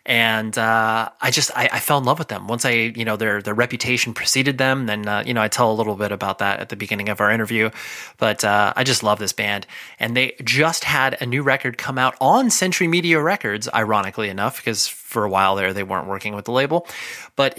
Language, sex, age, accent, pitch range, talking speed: English, male, 30-49, American, 110-135 Hz, 240 wpm